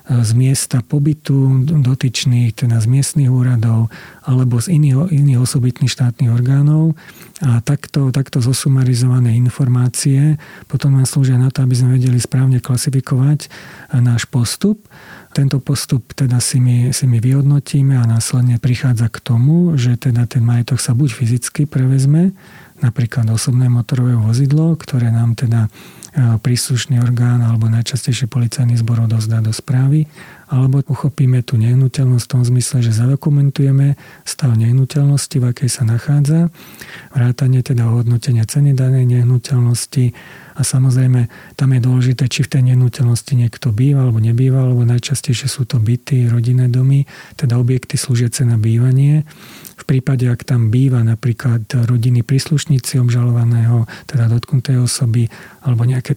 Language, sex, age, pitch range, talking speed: Slovak, male, 40-59, 120-140 Hz, 135 wpm